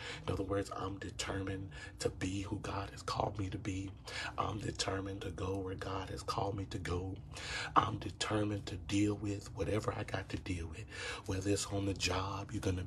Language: English